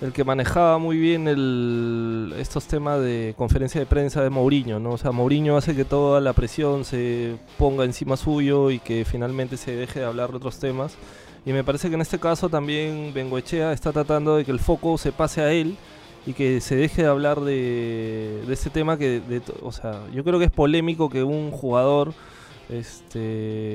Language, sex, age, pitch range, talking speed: Spanish, male, 20-39, 120-150 Hz, 200 wpm